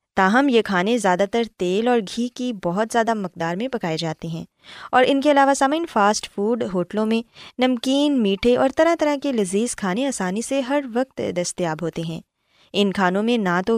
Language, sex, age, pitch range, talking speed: Urdu, female, 20-39, 185-270 Hz, 195 wpm